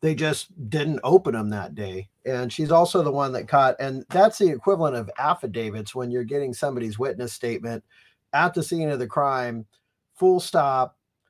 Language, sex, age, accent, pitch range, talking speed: English, male, 40-59, American, 120-155 Hz, 180 wpm